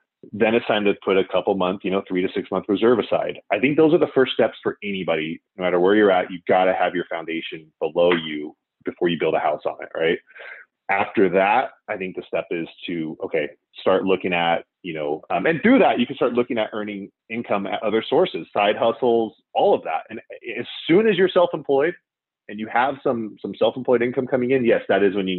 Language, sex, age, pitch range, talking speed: English, male, 30-49, 90-130 Hz, 235 wpm